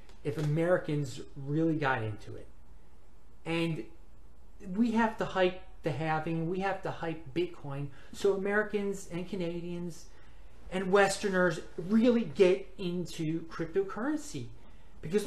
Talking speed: 115 wpm